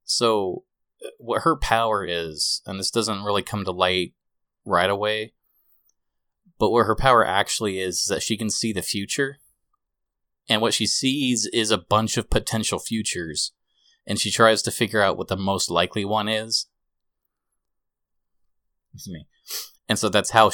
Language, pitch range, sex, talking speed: English, 95-115 Hz, male, 160 wpm